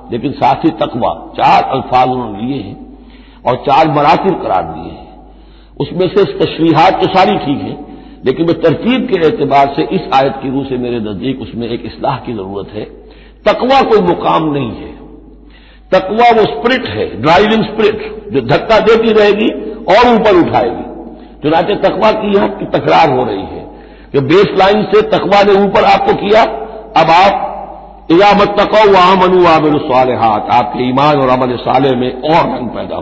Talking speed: 180 wpm